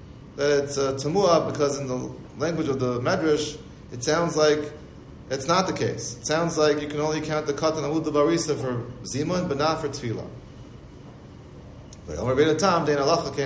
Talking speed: 165 wpm